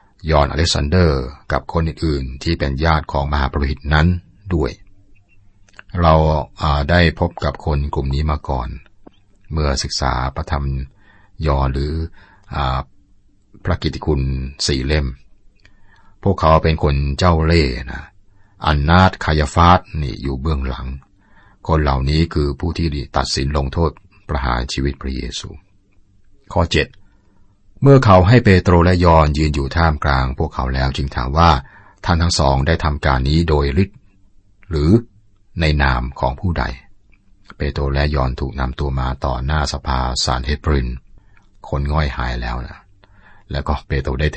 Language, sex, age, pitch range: Thai, male, 60-79, 70-95 Hz